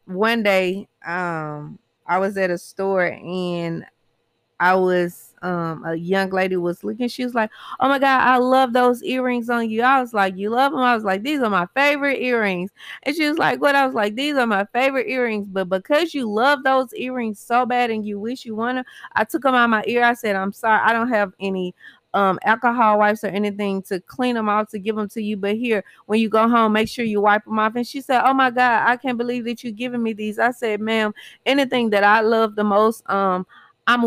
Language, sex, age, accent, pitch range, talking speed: English, female, 20-39, American, 190-240 Hz, 235 wpm